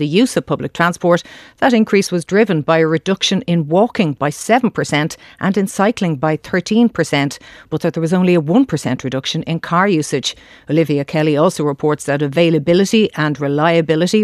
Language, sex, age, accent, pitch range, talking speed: English, female, 40-59, Irish, 150-185 Hz, 170 wpm